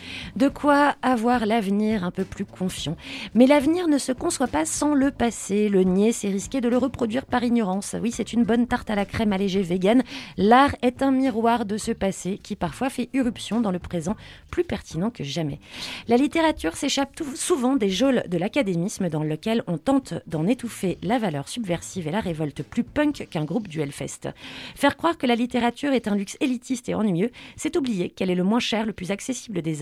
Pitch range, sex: 170-250 Hz, female